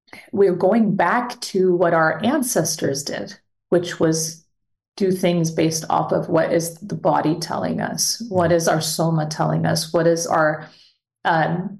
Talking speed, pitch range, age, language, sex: 160 wpm, 165-190 Hz, 30-49, English, female